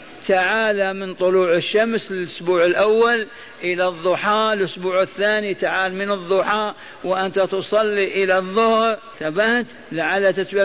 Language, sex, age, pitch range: Arabic, male, 50-69, 185-205 Hz